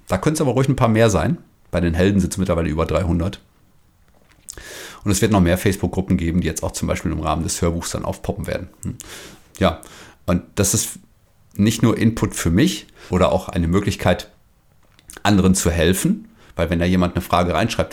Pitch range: 85-100 Hz